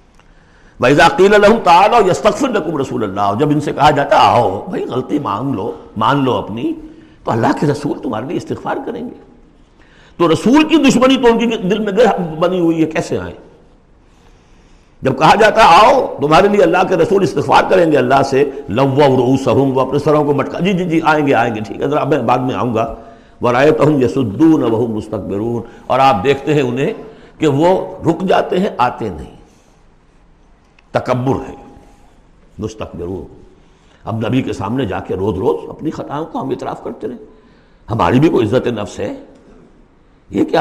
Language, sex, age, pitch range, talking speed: Urdu, male, 60-79, 115-180 Hz, 180 wpm